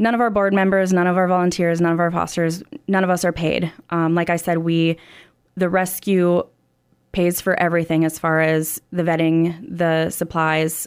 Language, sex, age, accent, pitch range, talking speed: English, female, 20-39, American, 165-180 Hz, 195 wpm